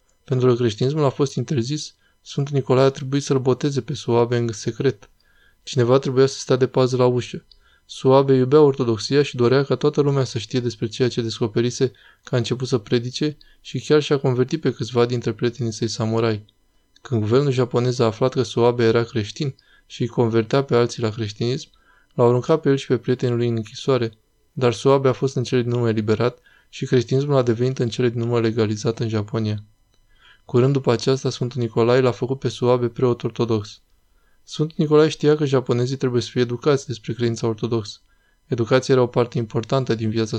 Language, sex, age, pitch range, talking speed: Romanian, male, 20-39, 115-135 Hz, 190 wpm